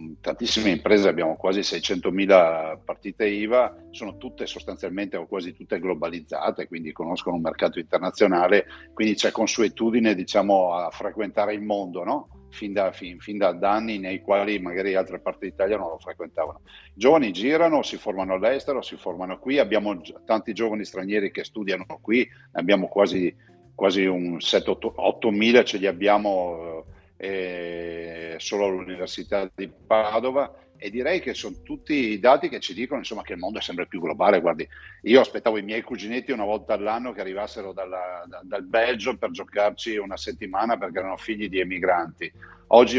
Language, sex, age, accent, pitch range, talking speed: Italian, male, 50-69, native, 90-105 Hz, 150 wpm